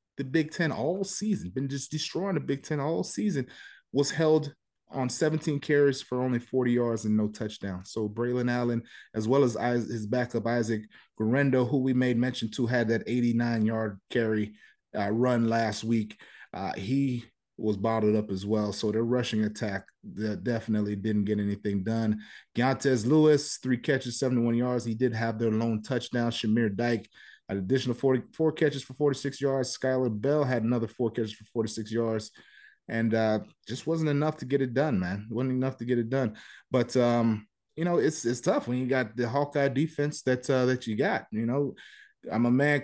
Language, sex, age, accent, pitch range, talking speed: English, male, 30-49, American, 115-145 Hz, 190 wpm